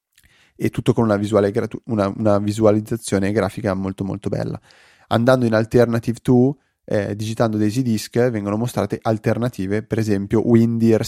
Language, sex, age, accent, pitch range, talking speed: Italian, male, 20-39, native, 100-115 Hz, 125 wpm